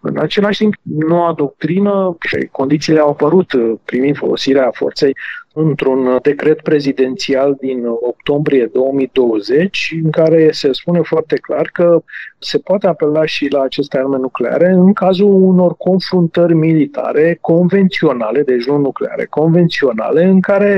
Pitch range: 145-190 Hz